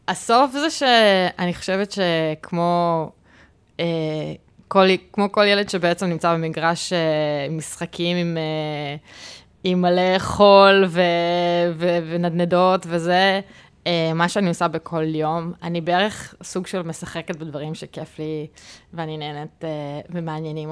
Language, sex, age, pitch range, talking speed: Hebrew, female, 20-39, 160-190 Hz, 115 wpm